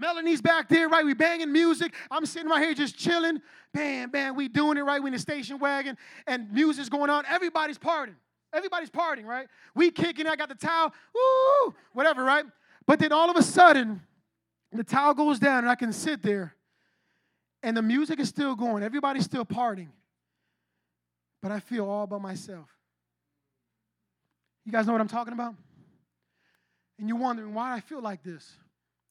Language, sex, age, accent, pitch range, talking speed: English, male, 20-39, American, 225-320 Hz, 180 wpm